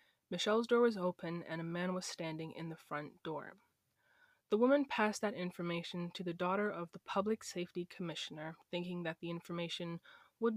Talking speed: 175 wpm